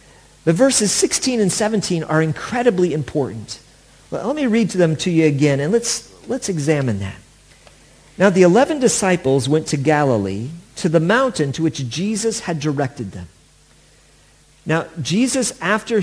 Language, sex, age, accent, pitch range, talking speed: English, male, 50-69, American, 145-195 Hz, 150 wpm